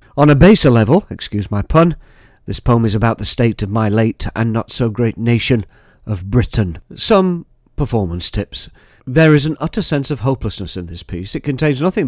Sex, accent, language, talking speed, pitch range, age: male, British, English, 185 wpm, 100-130 Hz, 50-69